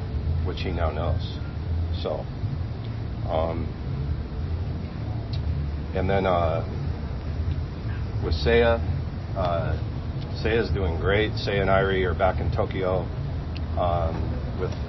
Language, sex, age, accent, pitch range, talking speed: English, male, 40-59, American, 80-105 Hz, 95 wpm